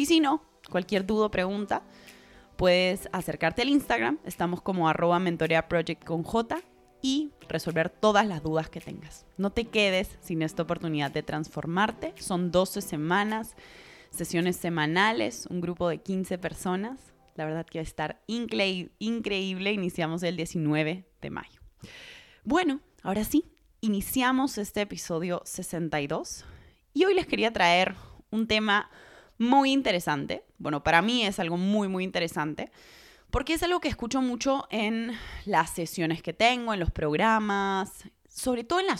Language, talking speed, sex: Spanish, 145 wpm, female